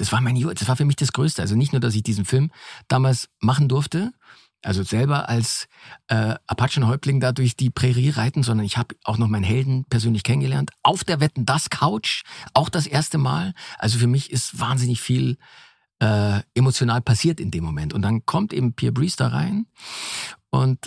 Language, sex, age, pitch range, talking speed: German, male, 50-69, 105-135 Hz, 200 wpm